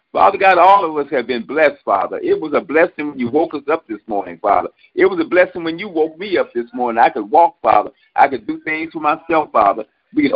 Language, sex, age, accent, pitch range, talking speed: English, male, 50-69, American, 140-215 Hz, 260 wpm